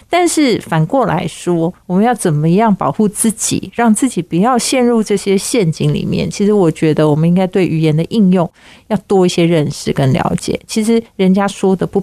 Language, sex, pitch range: Chinese, female, 165-200 Hz